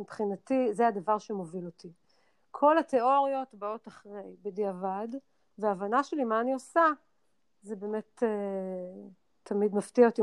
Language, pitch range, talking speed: Hebrew, 210-270 Hz, 115 wpm